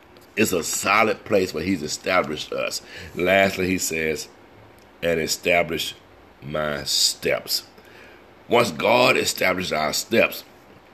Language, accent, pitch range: English, American, 80-100 Hz